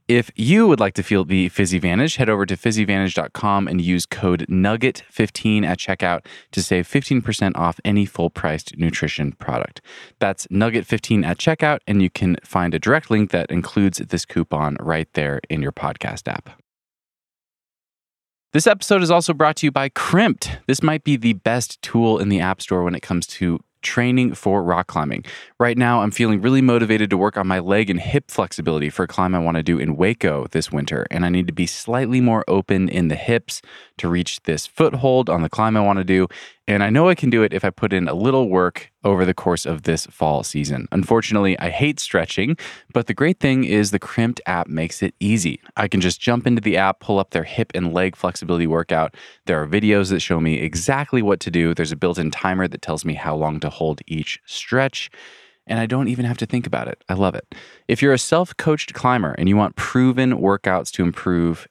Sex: male